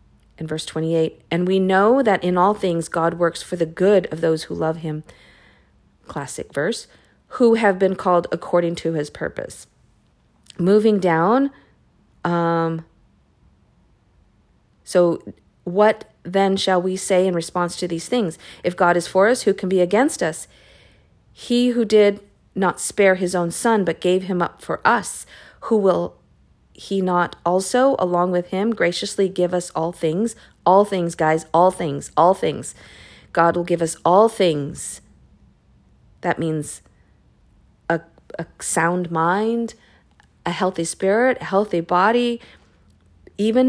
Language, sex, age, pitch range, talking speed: English, female, 40-59, 165-205 Hz, 145 wpm